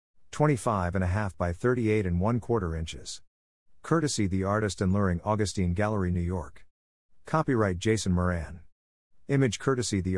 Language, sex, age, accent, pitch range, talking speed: English, male, 50-69, American, 90-115 Hz, 145 wpm